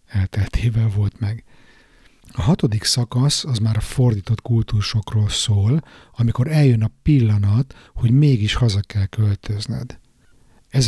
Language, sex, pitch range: Hungarian, male, 105-125 Hz